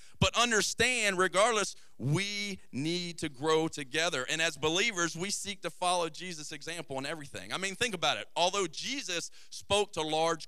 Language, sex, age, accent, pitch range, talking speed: English, male, 40-59, American, 155-200 Hz, 165 wpm